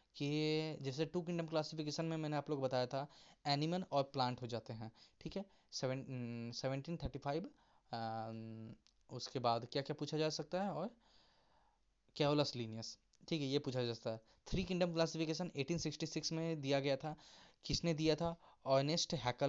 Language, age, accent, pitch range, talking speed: Hindi, 20-39, native, 125-155 Hz, 130 wpm